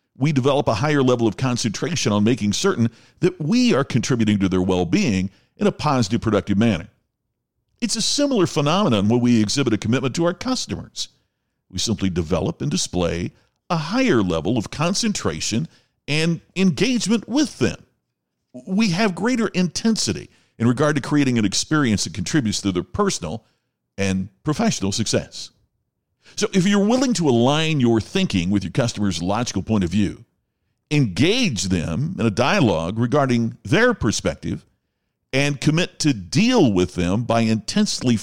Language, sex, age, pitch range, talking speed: English, male, 50-69, 105-170 Hz, 150 wpm